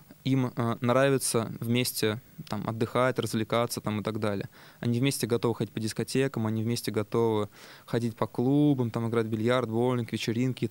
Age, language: 20-39, Russian